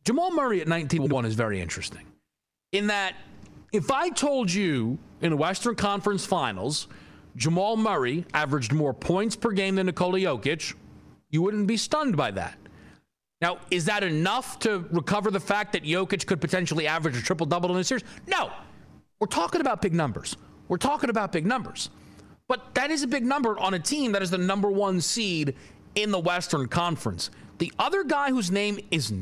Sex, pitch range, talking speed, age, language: male, 165-225 Hz, 180 wpm, 40-59, English